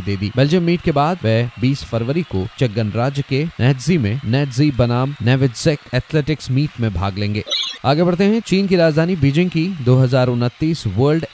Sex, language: male, Hindi